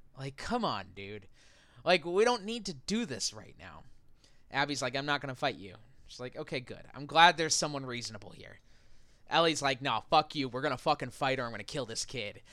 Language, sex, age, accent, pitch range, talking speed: English, male, 20-39, American, 140-210 Hz, 230 wpm